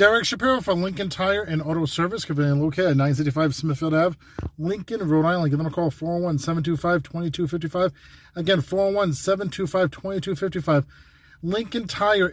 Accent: American